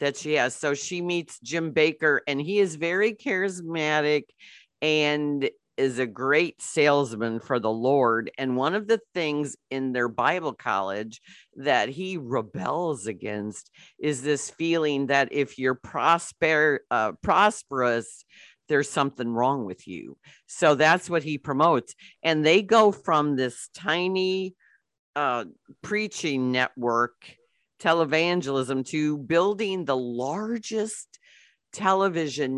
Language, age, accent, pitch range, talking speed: English, 50-69, American, 125-165 Hz, 125 wpm